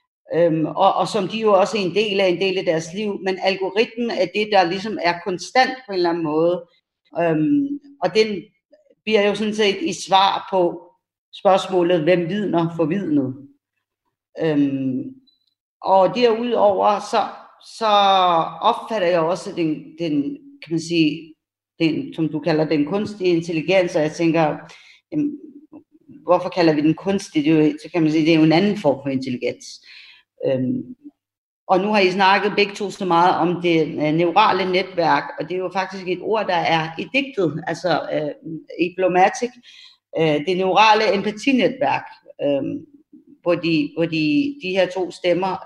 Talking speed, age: 160 wpm, 40-59